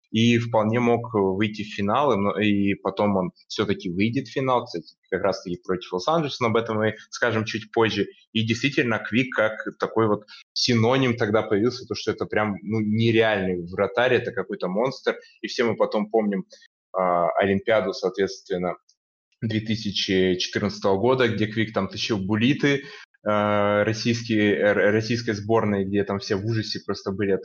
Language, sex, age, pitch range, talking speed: Russian, male, 20-39, 100-120 Hz, 150 wpm